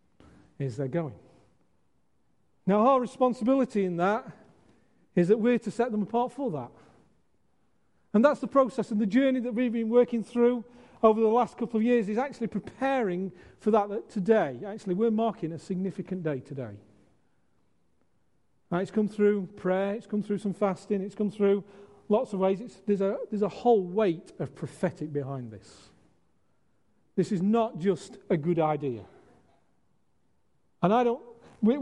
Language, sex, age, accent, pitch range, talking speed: English, male, 40-59, British, 180-230 Hz, 160 wpm